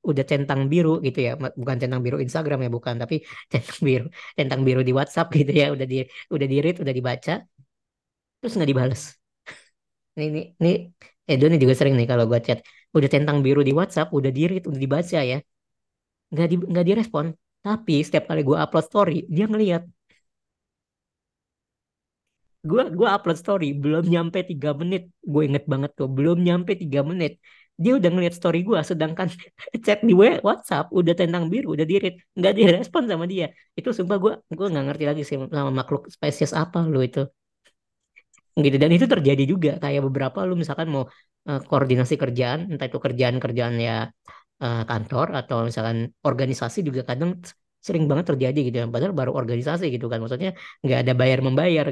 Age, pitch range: 20-39, 130-170 Hz